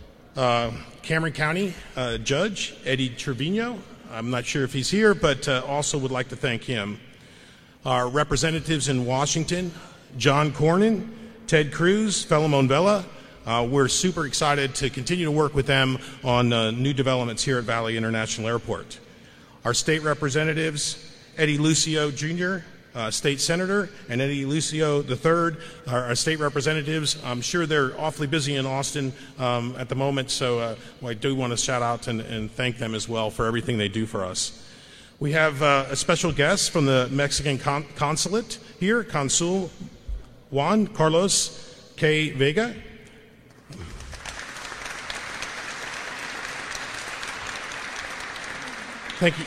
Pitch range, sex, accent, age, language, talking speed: 125-160 Hz, male, American, 40-59, English, 140 wpm